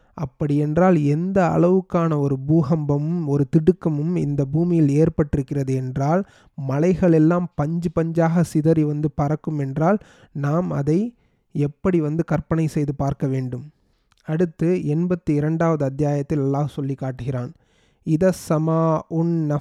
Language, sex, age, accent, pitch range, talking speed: Tamil, male, 30-49, native, 145-165 Hz, 105 wpm